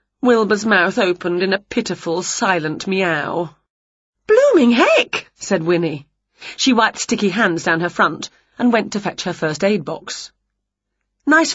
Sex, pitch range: female, 170-270 Hz